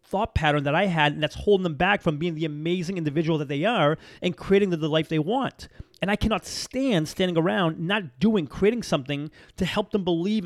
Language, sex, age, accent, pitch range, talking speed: English, male, 30-49, American, 150-195 Hz, 220 wpm